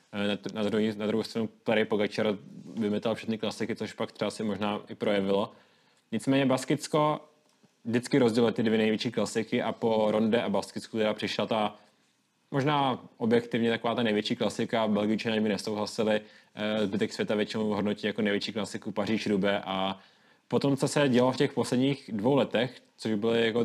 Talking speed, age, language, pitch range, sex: 160 wpm, 20-39, Czech, 105-125 Hz, male